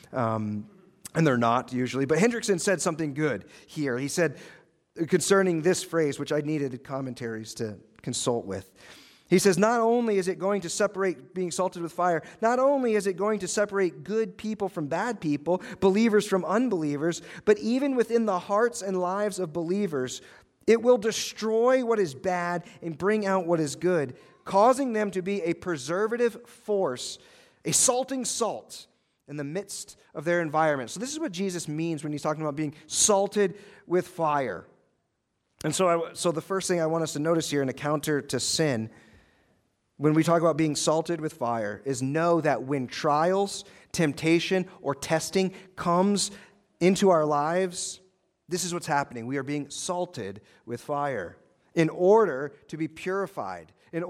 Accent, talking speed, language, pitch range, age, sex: American, 175 wpm, English, 150-195 Hz, 40-59, male